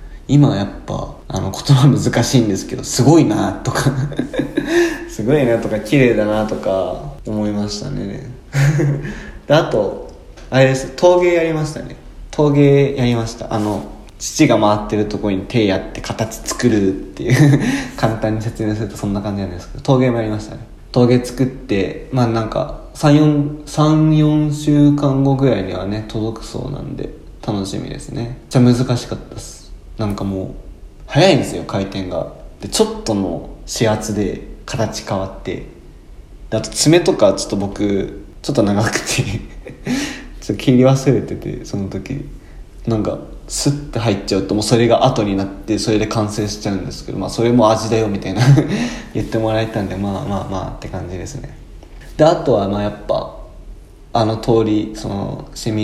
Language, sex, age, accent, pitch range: Japanese, male, 20-39, native, 100-135 Hz